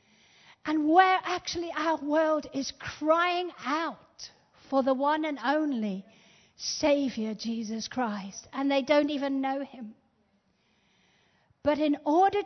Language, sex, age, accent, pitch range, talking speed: English, female, 50-69, British, 230-310 Hz, 120 wpm